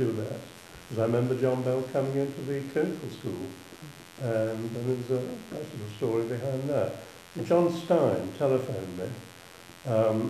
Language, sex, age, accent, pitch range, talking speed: English, male, 60-79, British, 105-130 Hz, 150 wpm